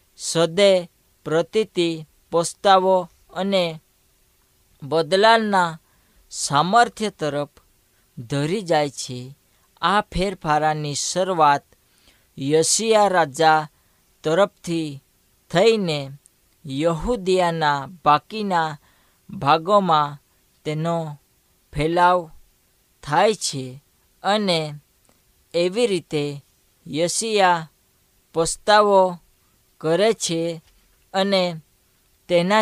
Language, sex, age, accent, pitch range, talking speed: Hindi, female, 20-39, native, 145-190 Hz, 50 wpm